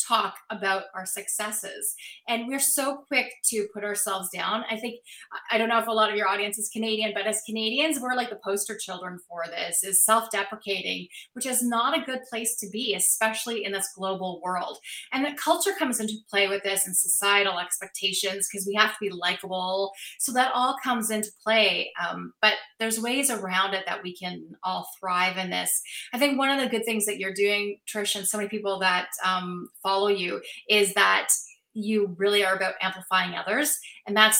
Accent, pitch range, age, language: American, 190-225 Hz, 30-49, English